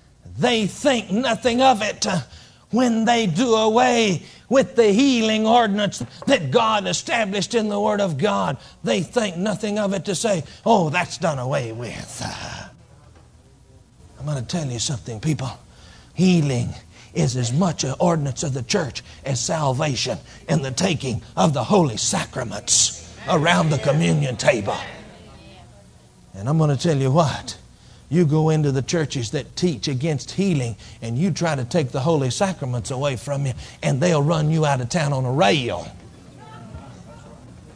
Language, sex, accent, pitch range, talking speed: English, male, American, 130-210 Hz, 155 wpm